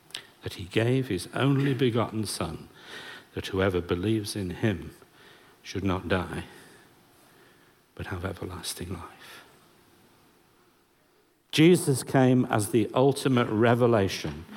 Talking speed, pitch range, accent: 105 wpm, 95-125 Hz, British